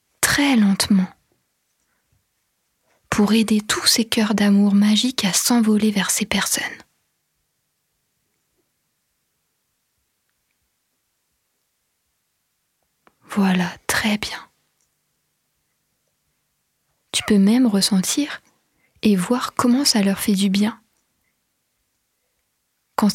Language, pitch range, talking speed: French, 195-225 Hz, 75 wpm